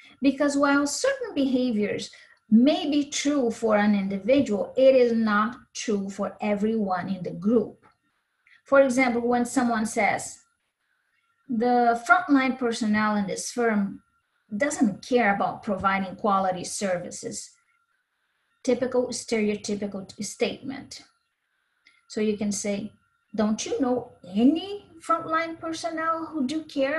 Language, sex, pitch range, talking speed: English, female, 215-290 Hz, 115 wpm